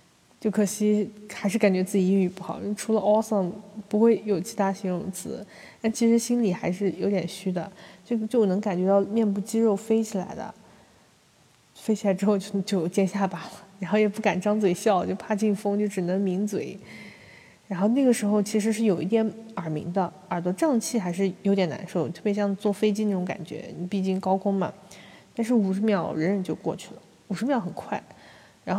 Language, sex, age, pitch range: Chinese, female, 20-39, 190-220 Hz